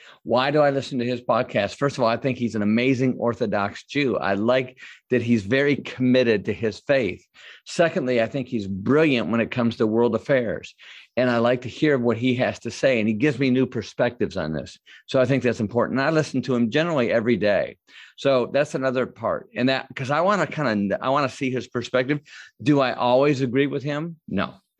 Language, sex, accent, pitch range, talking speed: English, male, American, 110-130 Hz, 225 wpm